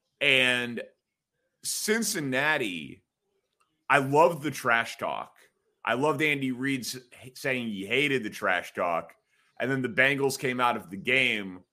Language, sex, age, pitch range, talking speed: English, male, 30-49, 115-150 Hz, 135 wpm